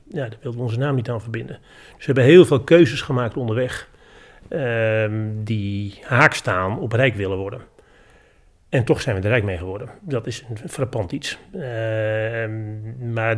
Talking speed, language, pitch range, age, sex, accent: 180 wpm, Dutch, 105-130 Hz, 40-59, male, Dutch